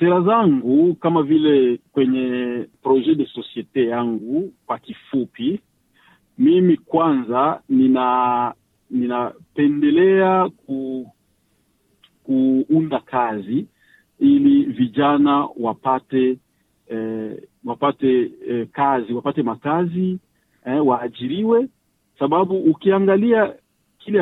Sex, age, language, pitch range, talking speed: male, 50-69, Swahili, 130-190 Hz, 80 wpm